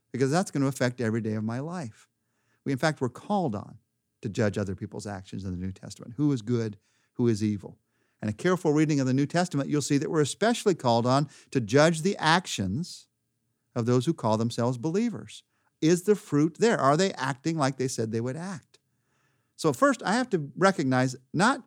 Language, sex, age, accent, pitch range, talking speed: English, male, 50-69, American, 120-190 Hz, 210 wpm